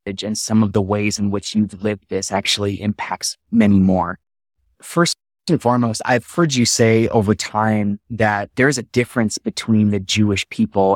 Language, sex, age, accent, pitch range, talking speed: English, male, 20-39, American, 100-115 Hz, 170 wpm